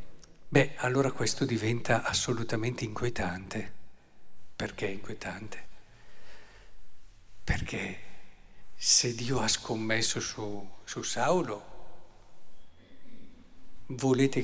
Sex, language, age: male, Italian, 50-69